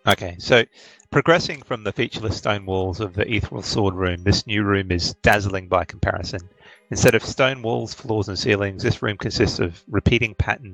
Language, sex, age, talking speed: English, male, 30-49, 185 wpm